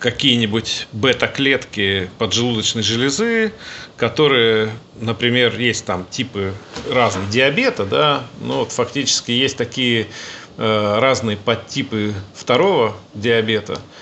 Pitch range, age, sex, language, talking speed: 110-135 Hz, 40-59, male, Russian, 100 wpm